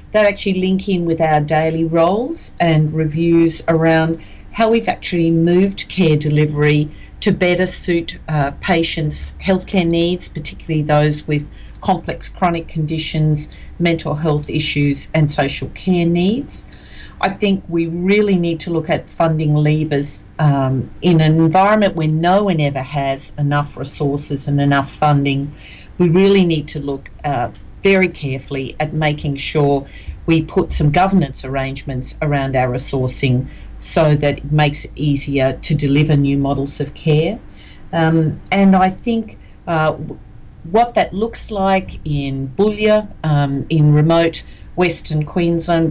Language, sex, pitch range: English, female, 145-175 Hz